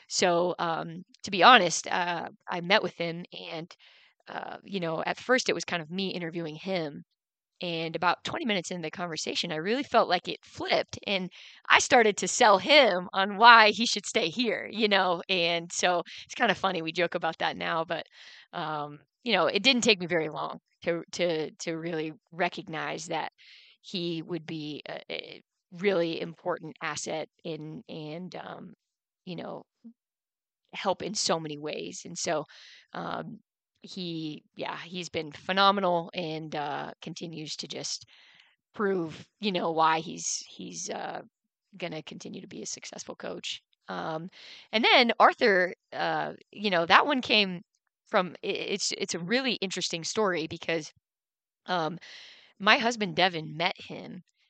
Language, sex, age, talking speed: English, female, 20-39, 160 wpm